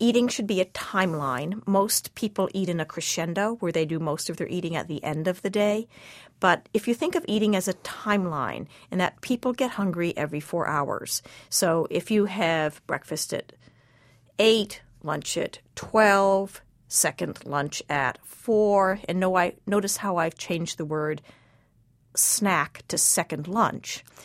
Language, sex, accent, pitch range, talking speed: English, female, American, 165-215 Hz, 165 wpm